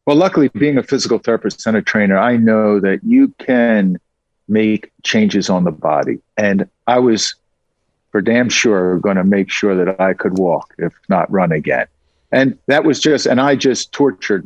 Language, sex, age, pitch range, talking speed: English, male, 50-69, 100-145 Hz, 185 wpm